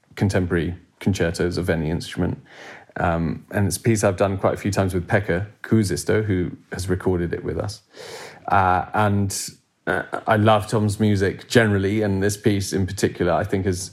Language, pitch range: English, 95-115 Hz